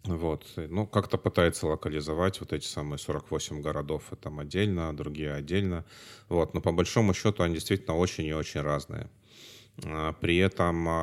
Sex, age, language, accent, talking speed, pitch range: male, 30-49, Russian, native, 145 wpm, 80-105 Hz